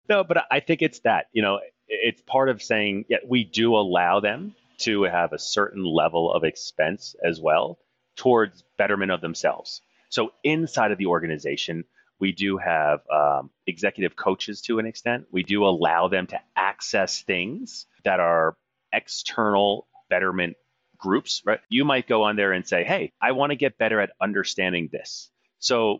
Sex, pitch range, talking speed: male, 85-115 Hz, 175 wpm